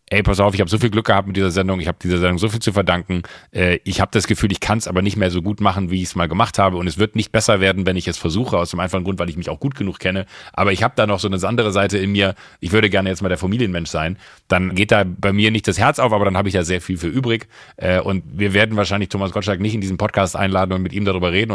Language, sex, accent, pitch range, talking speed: German, male, German, 95-110 Hz, 315 wpm